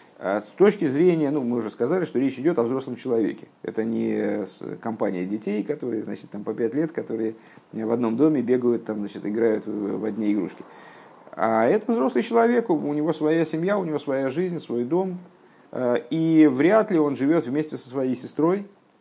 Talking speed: 185 wpm